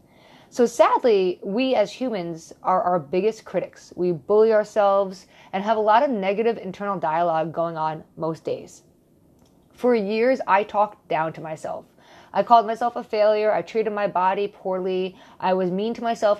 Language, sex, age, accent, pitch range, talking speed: English, female, 20-39, American, 175-215 Hz, 170 wpm